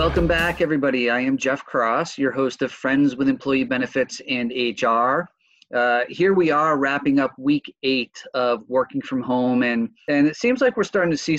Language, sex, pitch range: English, male, 120-150 Hz